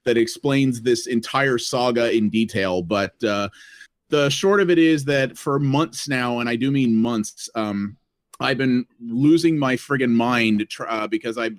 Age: 30-49